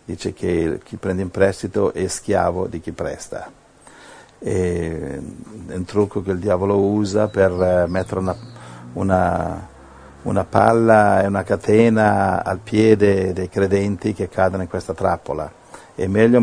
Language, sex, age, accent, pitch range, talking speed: Italian, male, 50-69, native, 90-110 Hz, 140 wpm